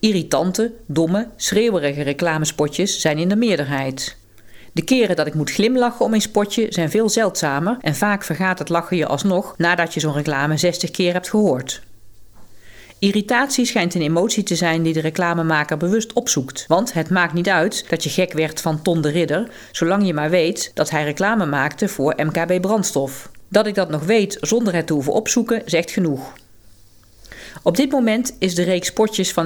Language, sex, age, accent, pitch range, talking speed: Dutch, female, 40-59, Dutch, 150-205 Hz, 185 wpm